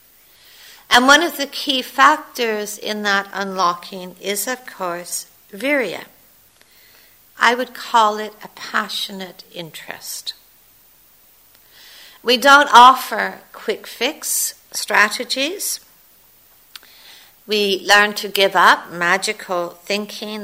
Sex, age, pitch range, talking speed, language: female, 60-79, 185-240 Hz, 95 wpm, English